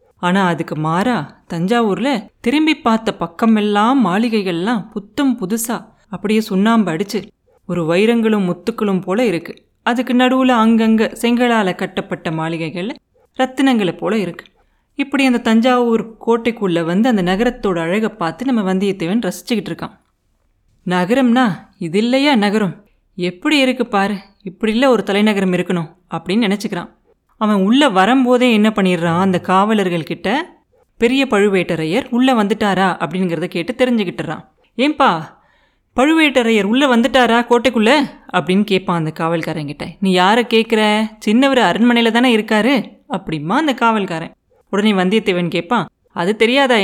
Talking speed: 120 wpm